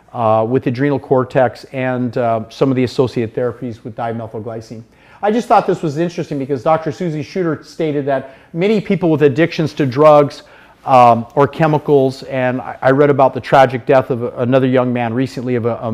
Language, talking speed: English, 185 wpm